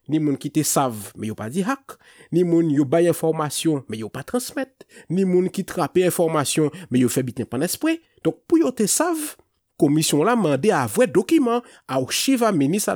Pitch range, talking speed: 140-220 Hz, 210 wpm